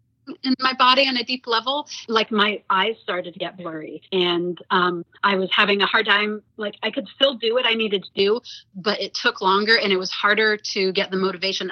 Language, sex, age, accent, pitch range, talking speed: English, female, 30-49, American, 185-220 Hz, 225 wpm